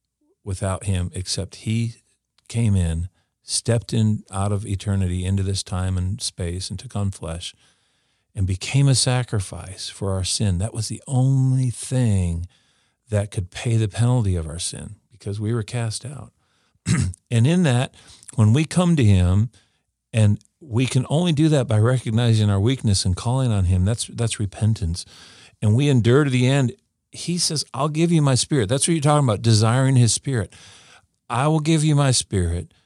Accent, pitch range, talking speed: American, 100-125 Hz, 175 wpm